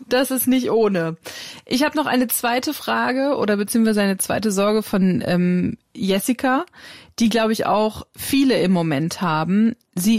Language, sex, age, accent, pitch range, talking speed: German, female, 30-49, German, 185-235 Hz, 160 wpm